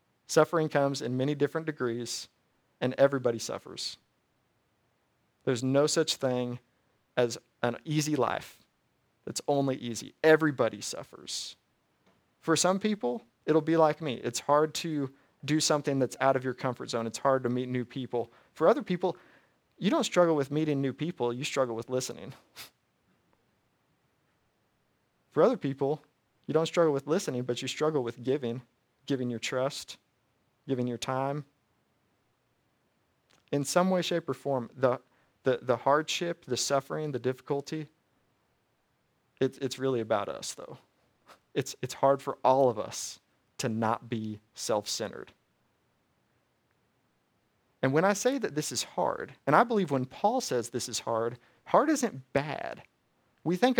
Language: English